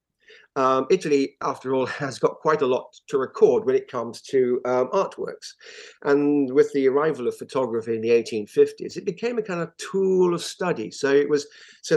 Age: 50-69